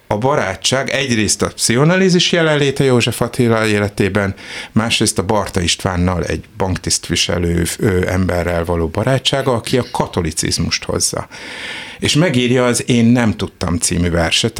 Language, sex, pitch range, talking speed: Hungarian, male, 95-130 Hz, 125 wpm